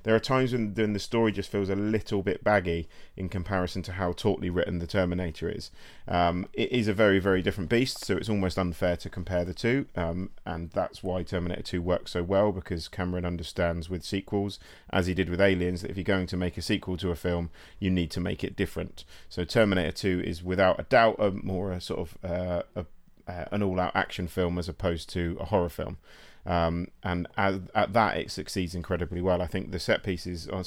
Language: English